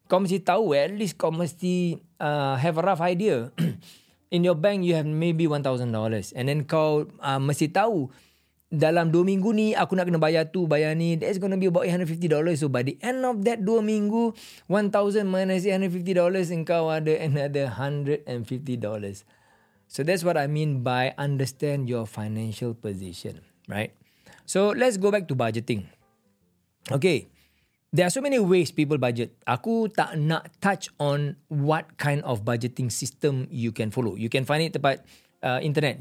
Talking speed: 175 wpm